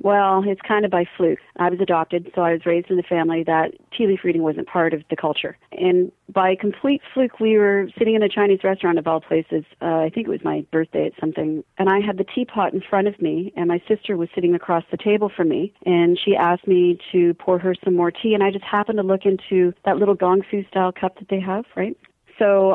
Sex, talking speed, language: female, 250 wpm, English